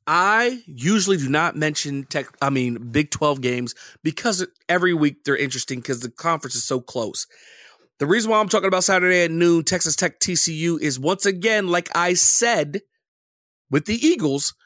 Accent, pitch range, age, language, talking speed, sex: American, 145-205 Hz, 30-49, English, 185 wpm, male